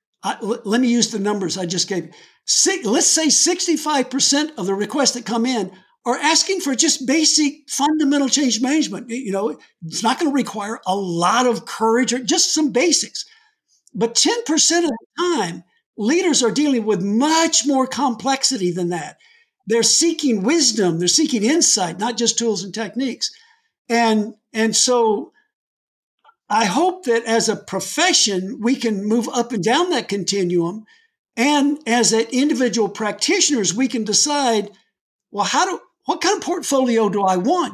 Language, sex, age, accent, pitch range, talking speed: English, male, 60-79, American, 215-300 Hz, 160 wpm